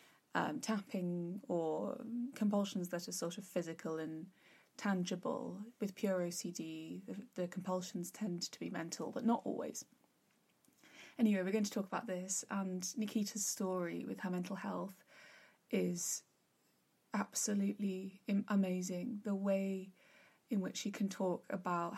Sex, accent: female, British